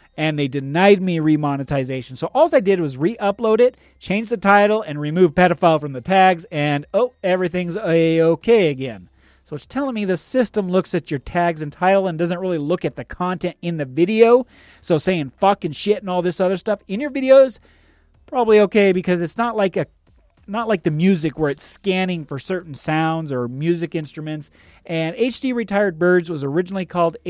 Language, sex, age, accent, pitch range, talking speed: English, male, 30-49, American, 140-195 Hz, 195 wpm